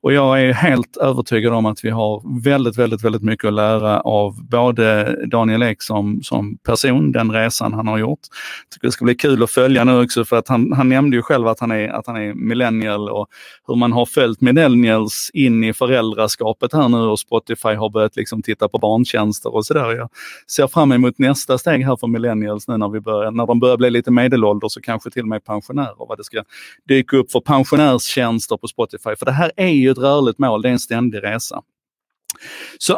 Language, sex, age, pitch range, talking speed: Swedish, male, 30-49, 110-140 Hz, 220 wpm